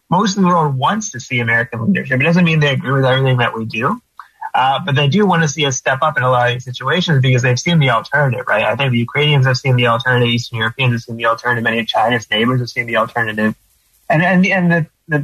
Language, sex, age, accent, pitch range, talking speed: English, male, 20-39, American, 125-155 Hz, 270 wpm